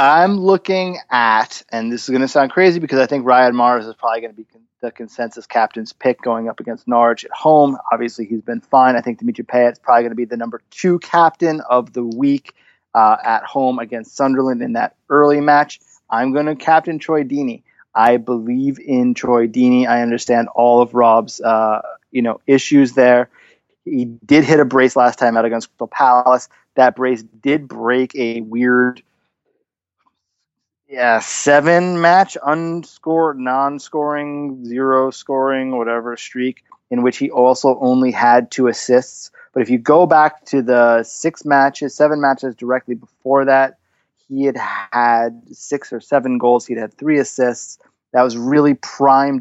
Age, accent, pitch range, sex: 30-49, American, 120-140 Hz, male